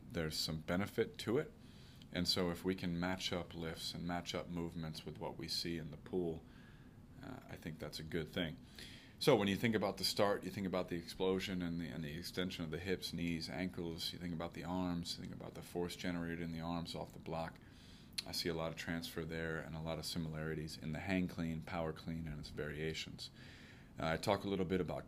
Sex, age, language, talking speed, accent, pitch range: male, 30-49, English, 235 wpm, American, 85-95 Hz